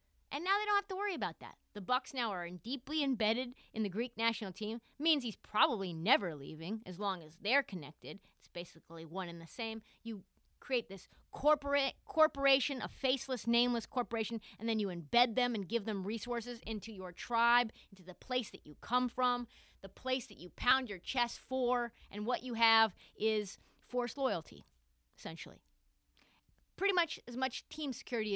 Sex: female